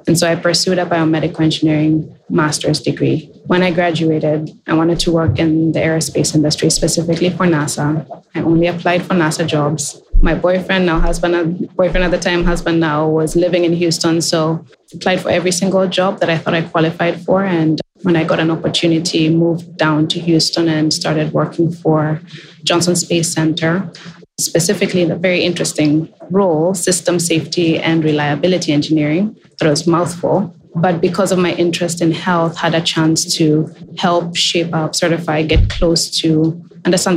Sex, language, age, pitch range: female, English, 20-39, 160-175 Hz